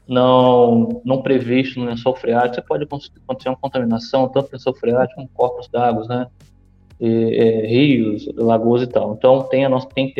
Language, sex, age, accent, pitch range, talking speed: Portuguese, male, 20-39, Brazilian, 120-140 Hz, 180 wpm